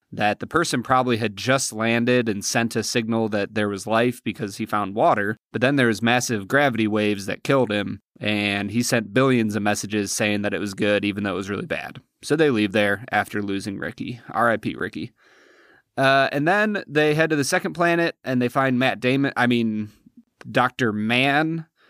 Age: 20-39